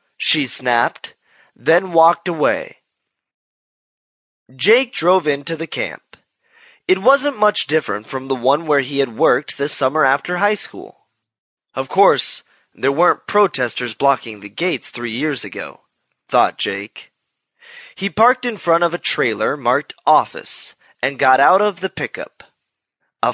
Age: 20-39